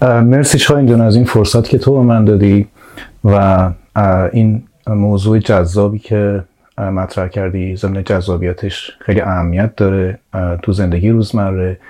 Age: 30-49